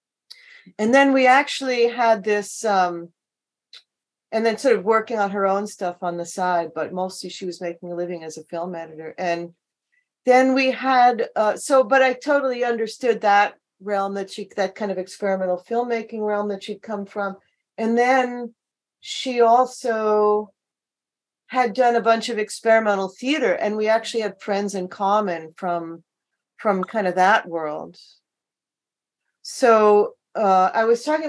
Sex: female